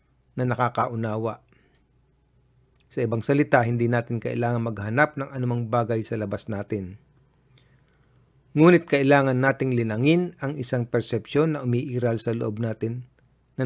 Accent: native